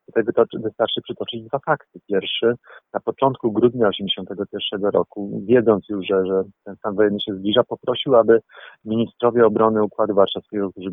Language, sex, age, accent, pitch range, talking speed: Polish, male, 40-59, native, 95-115 Hz, 150 wpm